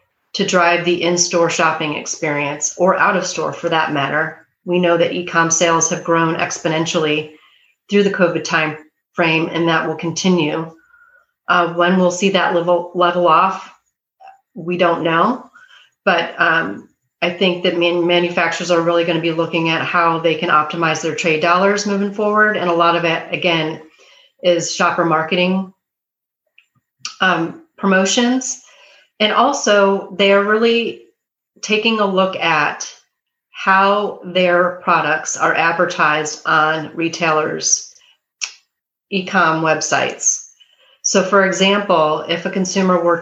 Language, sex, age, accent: English, female, 30-49, American